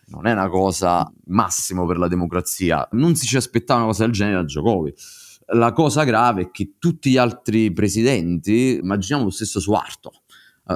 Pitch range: 90-115 Hz